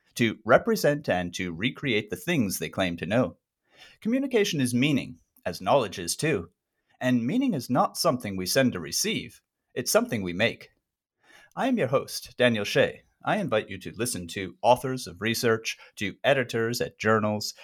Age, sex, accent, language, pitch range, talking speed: 30-49, male, American, English, 105-145 Hz, 170 wpm